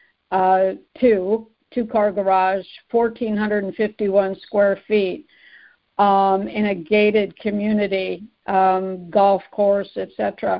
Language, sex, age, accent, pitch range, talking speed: English, female, 60-79, American, 195-230 Hz, 90 wpm